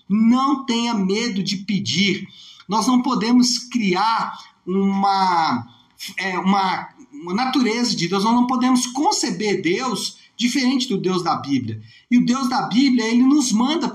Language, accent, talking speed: Portuguese, Brazilian, 140 wpm